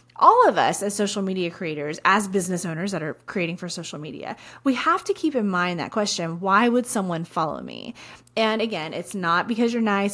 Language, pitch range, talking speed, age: English, 175-230 Hz, 215 wpm, 30-49